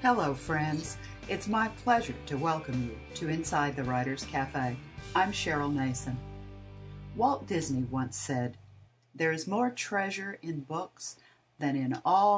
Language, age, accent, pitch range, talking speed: English, 50-69, American, 130-200 Hz, 140 wpm